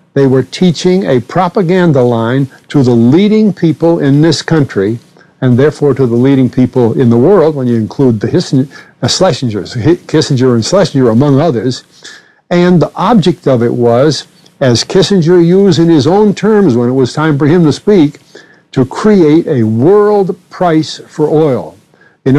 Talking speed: 160 wpm